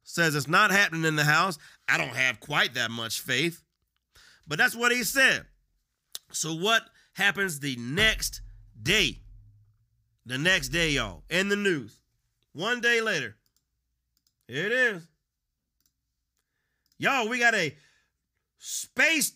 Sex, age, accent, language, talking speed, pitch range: male, 40-59, American, English, 130 wpm, 160-225 Hz